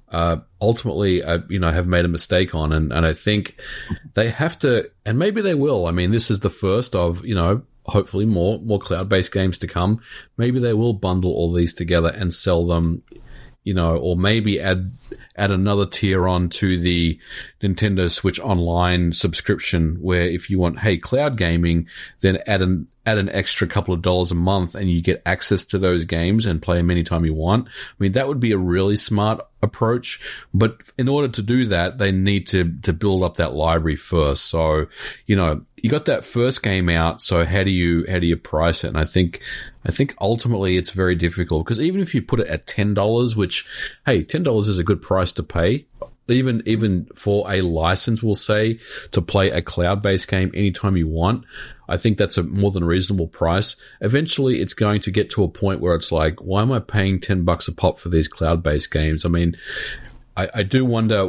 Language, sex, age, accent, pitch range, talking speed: English, male, 40-59, Australian, 85-105 Hz, 210 wpm